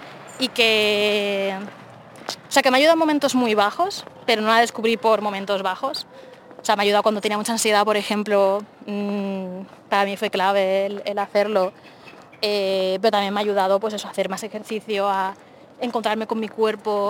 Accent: Spanish